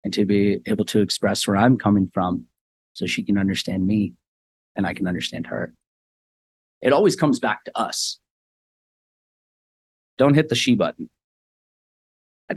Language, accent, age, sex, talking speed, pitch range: English, American, 30-49, male, 155 wpm, 105-150 Hz